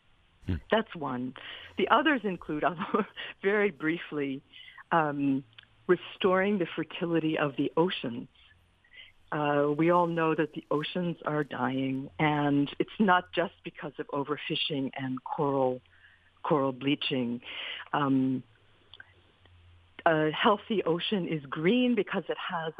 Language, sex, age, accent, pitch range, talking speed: English, female, 50-69, American, 145-195 Hz, 115 wpm